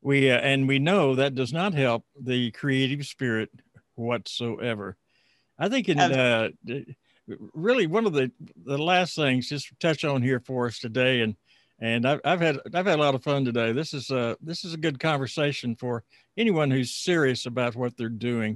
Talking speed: 190 wpm